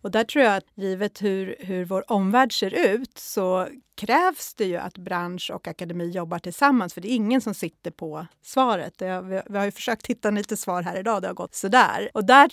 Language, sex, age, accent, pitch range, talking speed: Swedish, female, 30-49, native, 180-235 Hz, 225 wpm